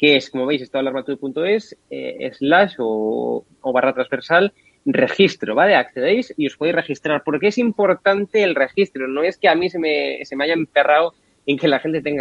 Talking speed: 190 wpm